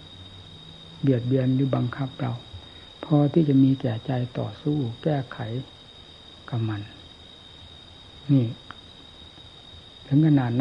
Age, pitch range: 60-79, 95-140 Hz